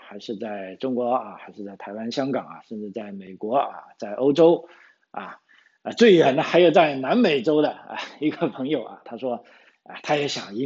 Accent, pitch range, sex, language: native, 120-155 Hz, male, Chinese